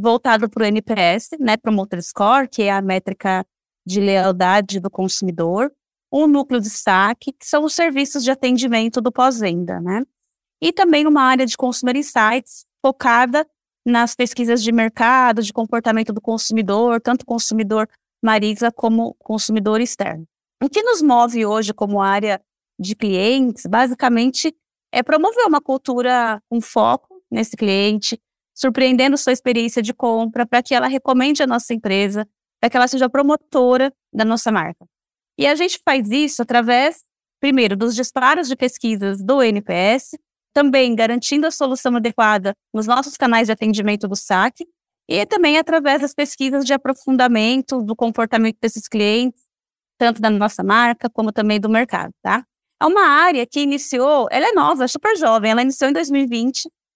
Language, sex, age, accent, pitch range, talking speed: Portuguese, female, 20-39, Brazilian, 220-270 Hz, 155 wpm